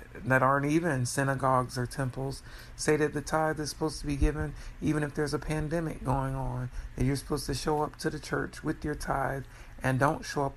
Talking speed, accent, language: 215 wpm, American, English